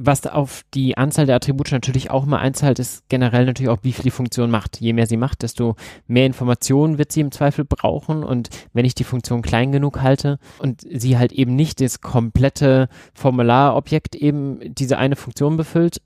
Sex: male